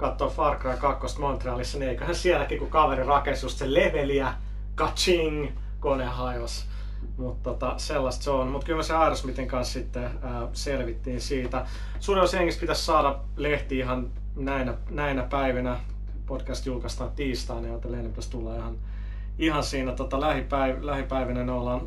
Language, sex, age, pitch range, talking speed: Finnish, male, 30-49, 120-140 Hz, 140 wpm